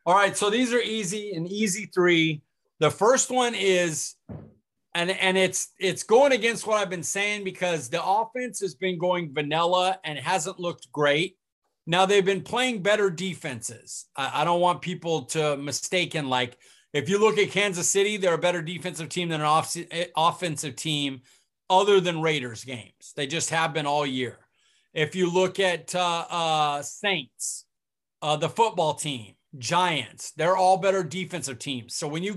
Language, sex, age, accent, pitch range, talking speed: English, male, 30-49, American, 150-195 Hz, 175 wpm